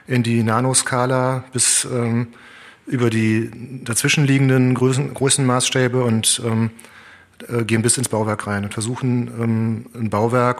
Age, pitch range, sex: 40-59, 115-125 Hz, male